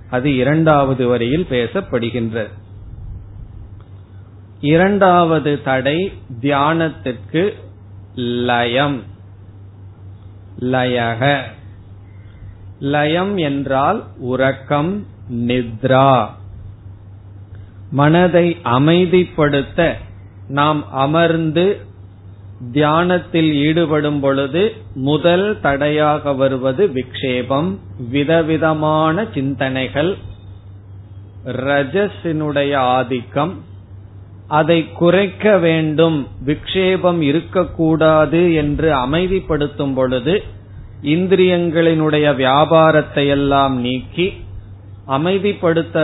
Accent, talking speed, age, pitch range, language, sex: native, 50 wpm, 30-49, 105-155 Hz, Tamil, male